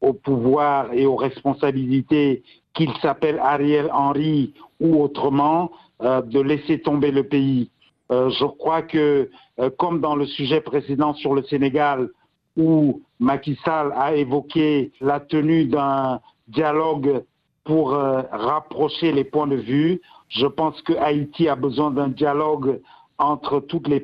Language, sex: French, male